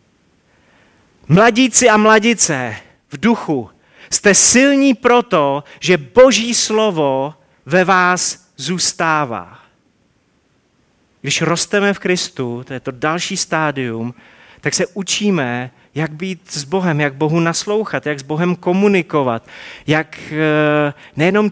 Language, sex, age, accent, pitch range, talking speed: Czech, male, 30-49, native, 140-190 Hz, 110 wpm